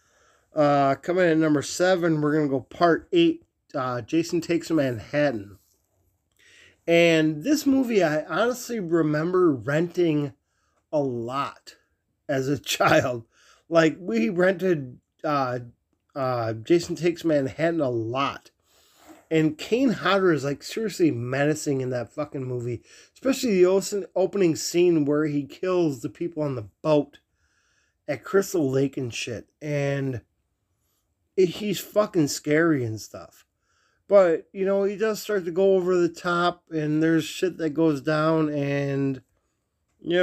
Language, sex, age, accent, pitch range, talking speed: English, male, 30-49, American, 130-175 Hz, 135 wpm